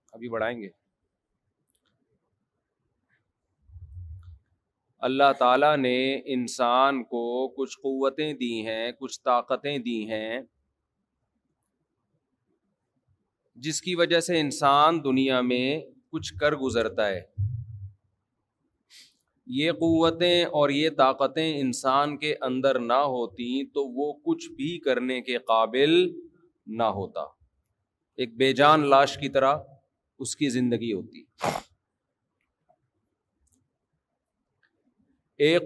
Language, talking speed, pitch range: Urdu, 95 wpm, 115-150 Hz